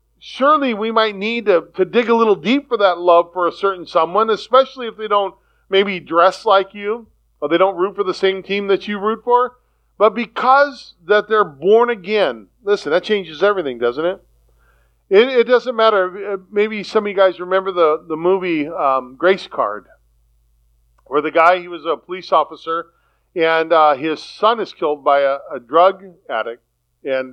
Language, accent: English, American